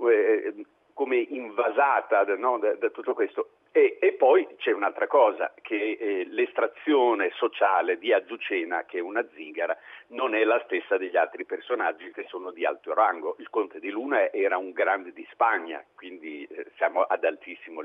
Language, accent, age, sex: Italian, native, 50-69, male